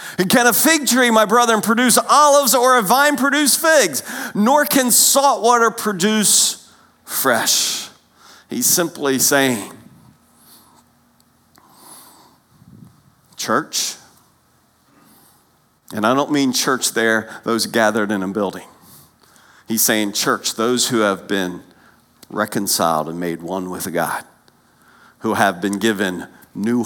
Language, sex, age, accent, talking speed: English, male, 50-69, American, 120 wpm